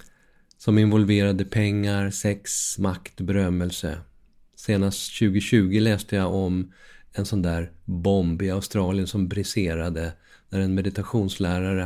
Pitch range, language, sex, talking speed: 90-105 Hz, Swedish, male, 110 wpm